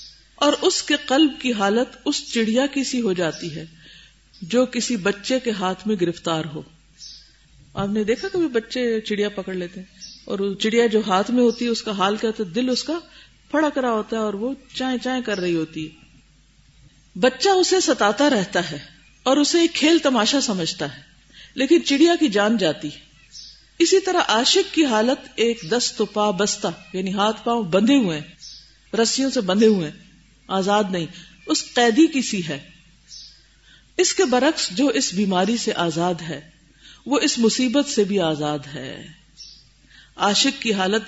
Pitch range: 175-255 Hz